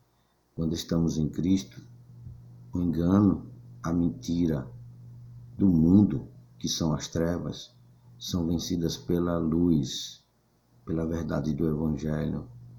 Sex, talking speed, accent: male, 105 wpm, Brazilian